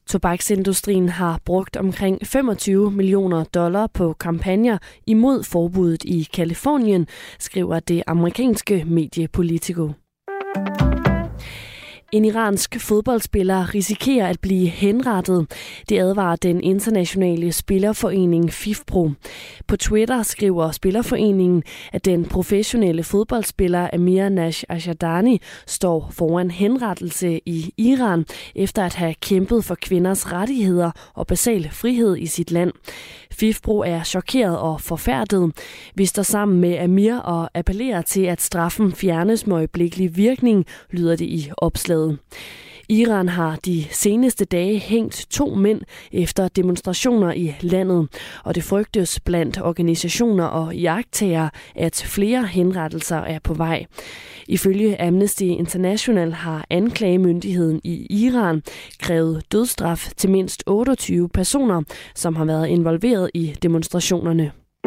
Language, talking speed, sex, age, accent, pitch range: Danish, 115 wpm, female, 20-39, native, 170-210 Hz